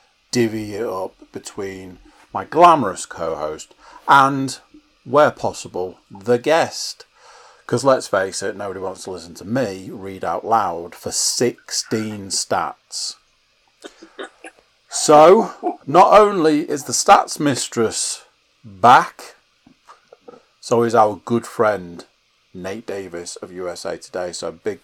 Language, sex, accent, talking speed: English, male, British, 115 wpm